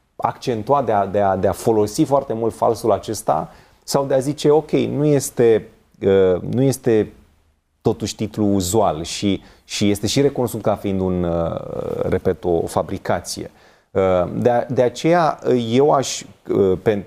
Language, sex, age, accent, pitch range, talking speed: Romanian, male, 30-49, native, 95-130 Hz, 160 wpm